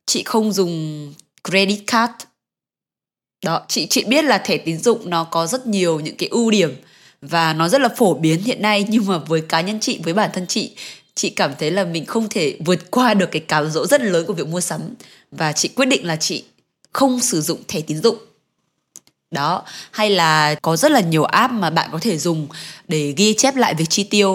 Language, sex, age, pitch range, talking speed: Vietnamese, female, 20-39, 165-225 Hz, 220 wpm